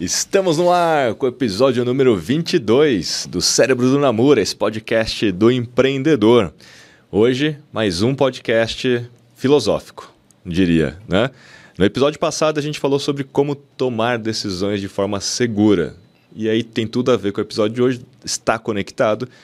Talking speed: 150 wpm